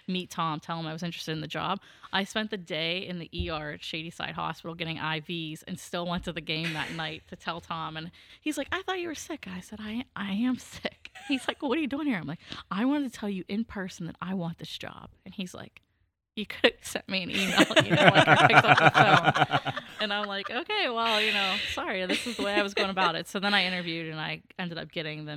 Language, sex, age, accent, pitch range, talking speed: English, female, 20-39, American, 155-200 Hz, 260 wpm